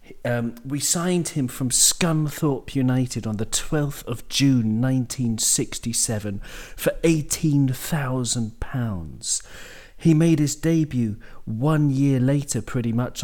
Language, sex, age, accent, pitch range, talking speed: English, male, 40-59, British, 105-130 Hz, 120 wpm